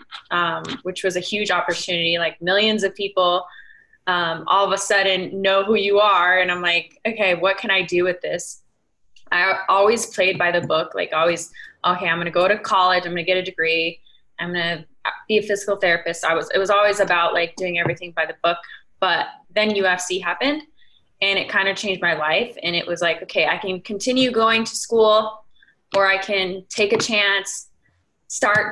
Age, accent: 20-39, American